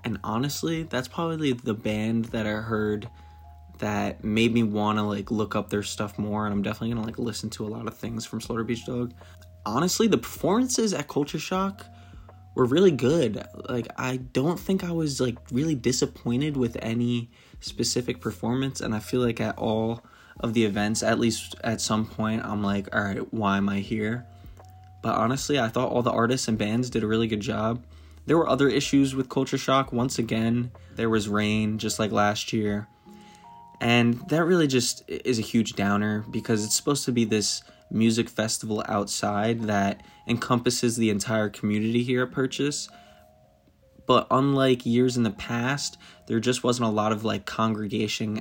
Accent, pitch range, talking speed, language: American, 105-125 Hz, 180 wpm, English